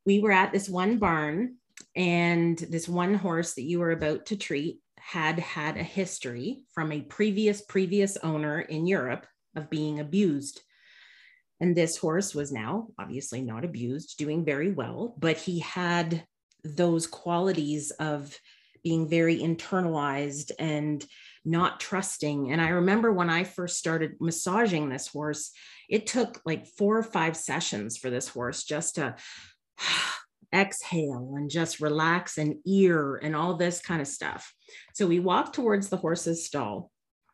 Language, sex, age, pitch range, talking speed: English, female, 40-59, 150-195 Hz, 150 wpm